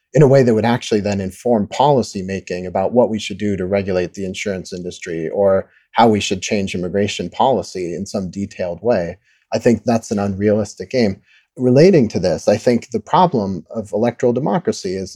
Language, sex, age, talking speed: English, male, 30-49, 185 wpm